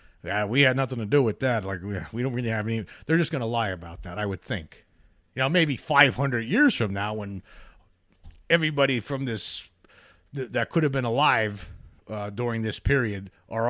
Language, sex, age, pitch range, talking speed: English, male, 40-59, 95-130 Hz, 200 wpm